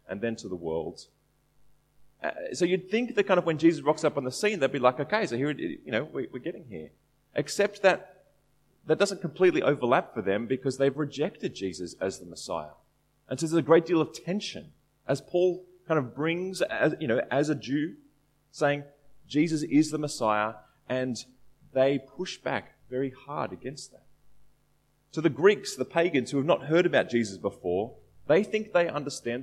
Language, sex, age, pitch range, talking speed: English, male, 30-49, 140-185 Hz, 185 wpm